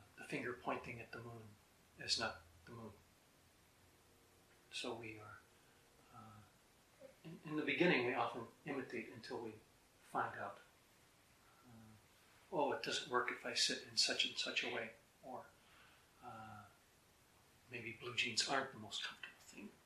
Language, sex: English, male